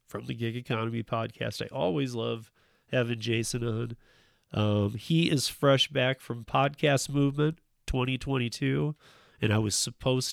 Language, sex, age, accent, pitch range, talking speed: English, male, 40-59, American, 115-135 Hz, 140 wpm